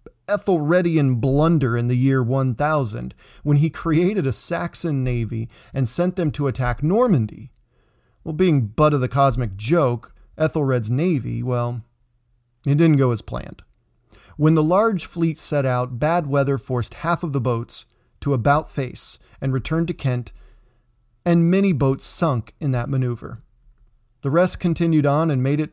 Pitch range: 120-155 Hz